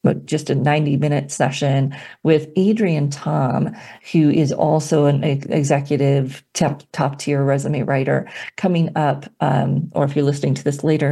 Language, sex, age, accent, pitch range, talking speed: English, female, 40-59, American, 140-170 Hz, 145 wpm